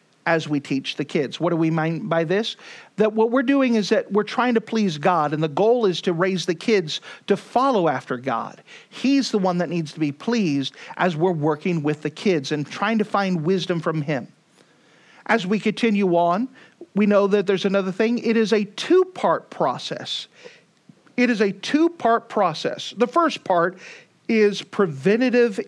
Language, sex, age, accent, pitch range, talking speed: English, male, 50-69, American, 175-230 Hz, 185 wpm